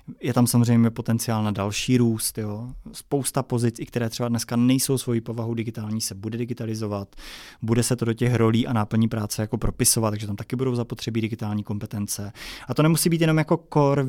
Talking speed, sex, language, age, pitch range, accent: 195 wpm, male, Czech, 20-39, 115-130 Hz, native